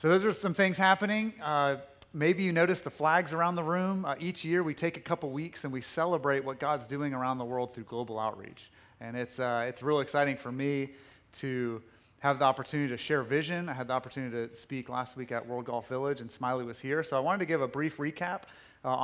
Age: 30-49